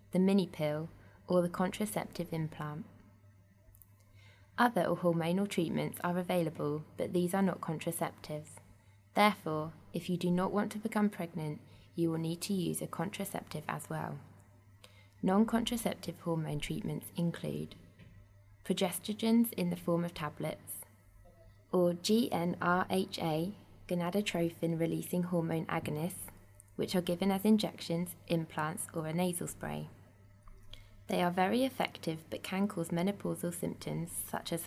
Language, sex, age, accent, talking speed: English, female, 20-39, British, 125 wpm